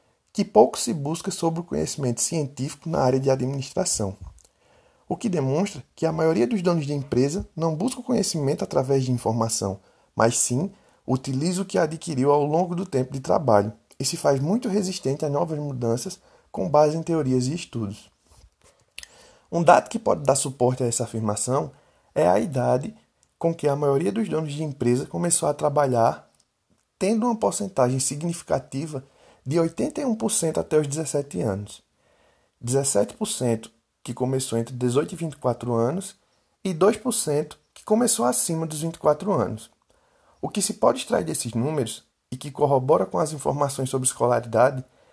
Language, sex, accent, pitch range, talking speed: Portuguese, male, Brazilian, 125-170 Hz, 160 wpm